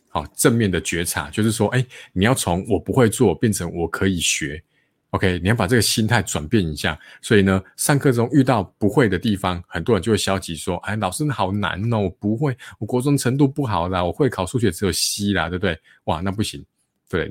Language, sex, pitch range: Chinese, male, 85-110 Hz